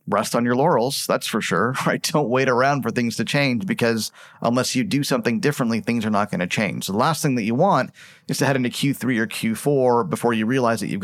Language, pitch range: English, 110-125 Hz